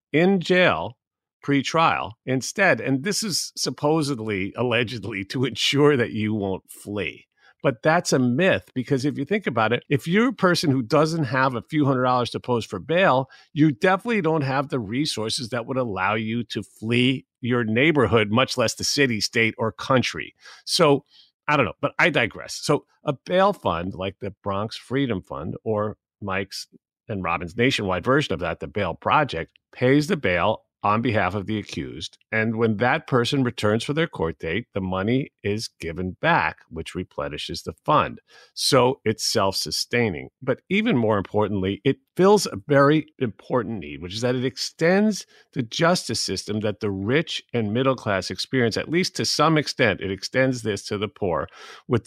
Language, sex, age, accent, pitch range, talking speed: English, male, 50-69, American, 100-145 Hz, 175 wpm